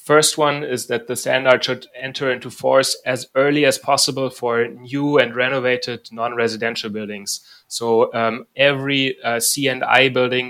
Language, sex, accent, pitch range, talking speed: English, male, German, 120-140 Hz, 150 wpm